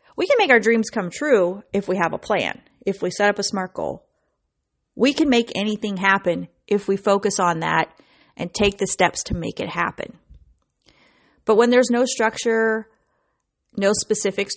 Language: English